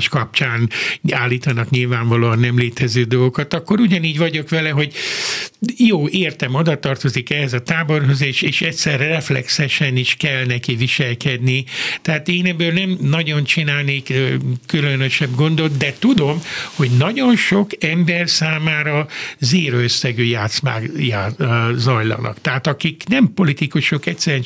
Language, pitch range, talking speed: Hungarian, 130-165 Hz, 120 wpm